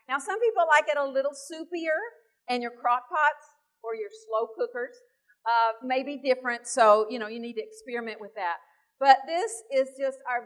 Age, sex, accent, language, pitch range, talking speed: 50-69, female, American, English, 235-330 Hz, 195 wpm